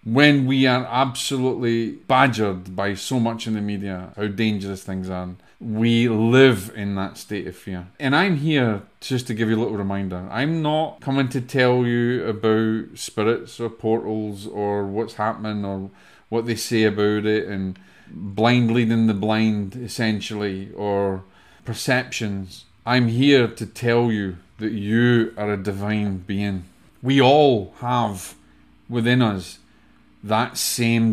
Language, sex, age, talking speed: English, male, 30-49, 150 wpm